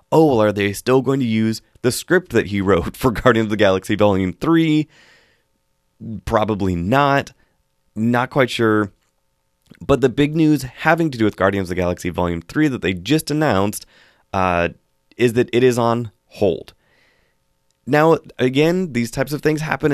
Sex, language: male, English